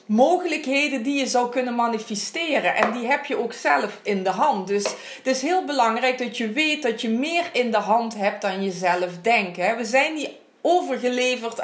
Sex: female